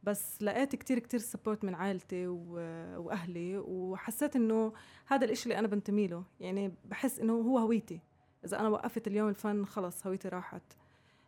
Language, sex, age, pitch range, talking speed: Arabic, female, 20-39, 185-220 Hz, 155 wpm